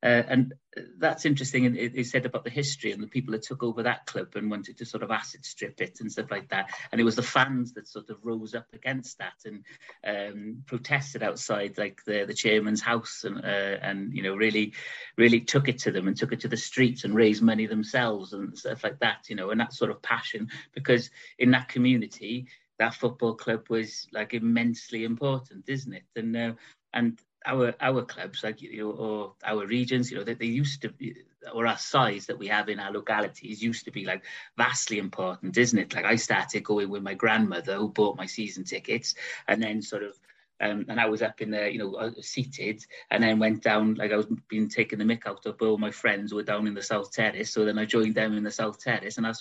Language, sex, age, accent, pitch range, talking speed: English, male, 30-49, British, 105-125 Hz, 235 wpm